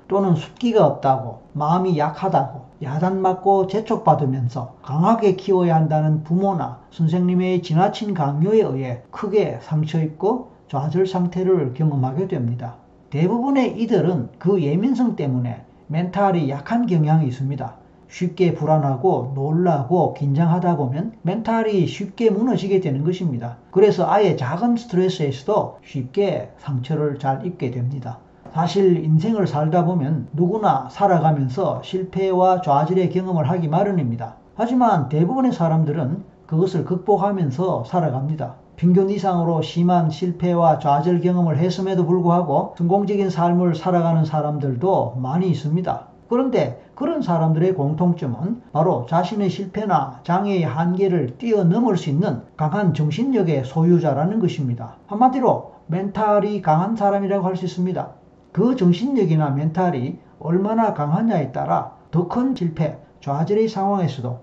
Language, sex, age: Korean, male, 40-59